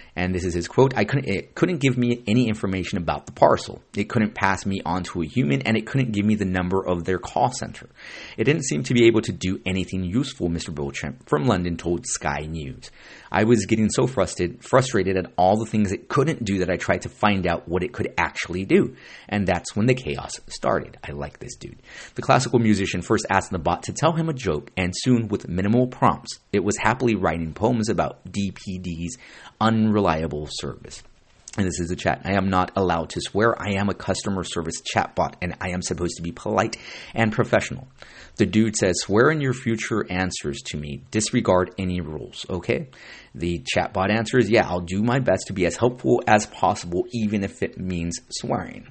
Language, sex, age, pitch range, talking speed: English, male, 30-49, 90-110 Hz, 210 wpm